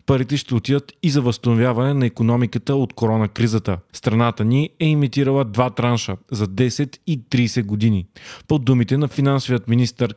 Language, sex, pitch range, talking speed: Bulgarian, male, 115-140 Hz, 160 wpm